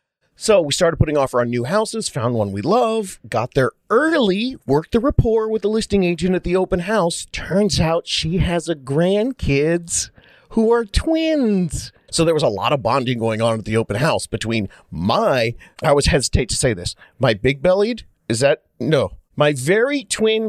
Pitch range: 125-190 Hz